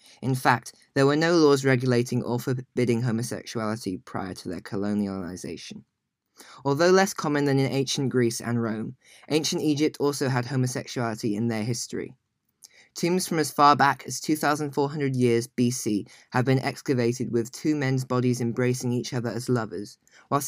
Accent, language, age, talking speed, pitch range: British, English, 20-39, 155 wpm, 120-140 Hz